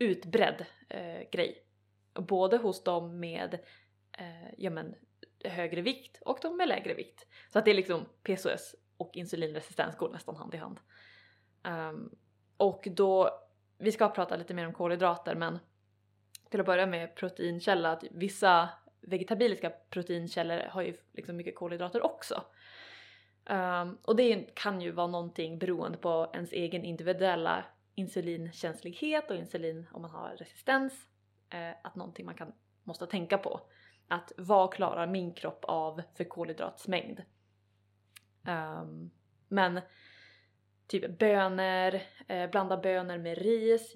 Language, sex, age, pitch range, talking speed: Swedish, female, 20-39, 165-195 Hz, 135 wpm